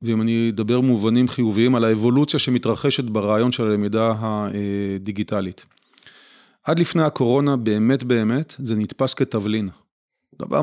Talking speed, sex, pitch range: 120 wpm, male, 110-135 Hz